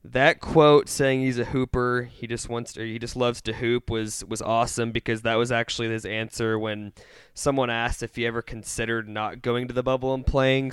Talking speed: 215 wpm